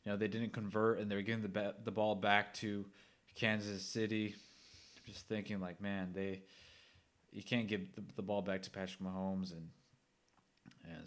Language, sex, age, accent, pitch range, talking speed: English, male, 20-39, American, 100-115 Hz, 185 wpm